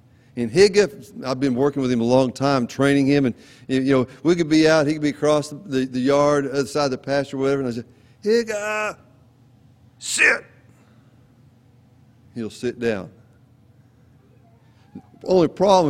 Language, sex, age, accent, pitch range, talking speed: English, male, 40-59, American, 120-155 Hz, 170 wpm